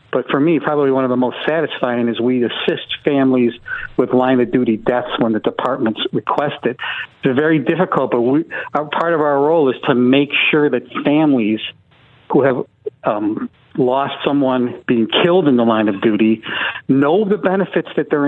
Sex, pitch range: male, 120-150 Hz